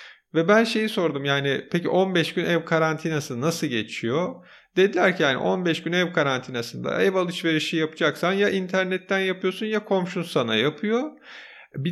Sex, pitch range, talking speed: male, 160-210 Hz, 150 wpm